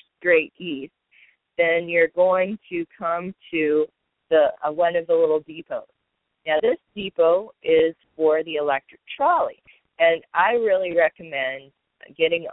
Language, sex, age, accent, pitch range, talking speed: English, female, 30-49, American, 140-190 Hz, 135 wpm